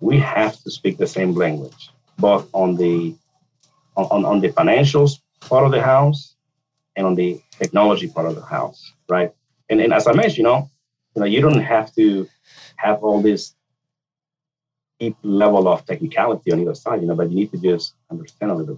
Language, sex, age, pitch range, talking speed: English, male, 30-49, 95-140 Hz, 190 wpm